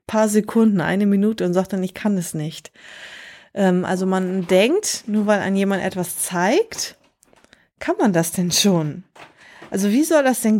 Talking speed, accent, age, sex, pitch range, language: 170 wpm, German, 30-49, female, 185-225 Hz, German